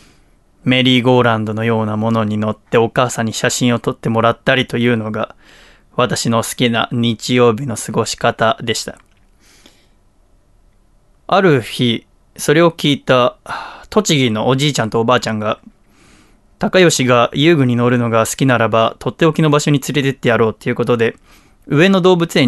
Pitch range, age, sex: 115-145 Hz, 20-39, male